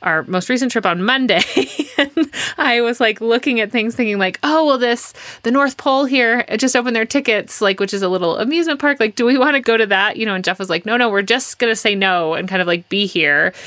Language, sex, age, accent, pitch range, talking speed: English, female, 30-49, American, 175-235 Hz, 270 wpm